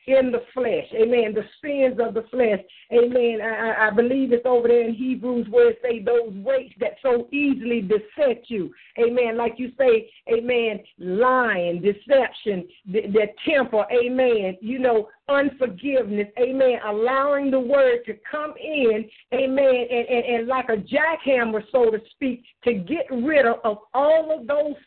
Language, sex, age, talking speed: English, female, 50-69, 160 wpm